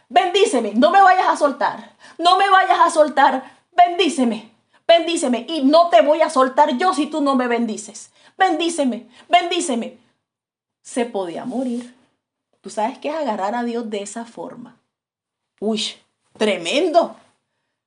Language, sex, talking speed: English, female, 140 wpm